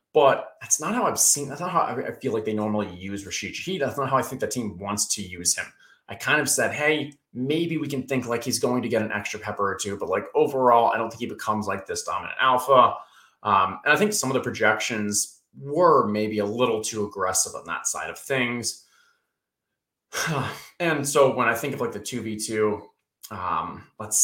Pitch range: 105-135 Hz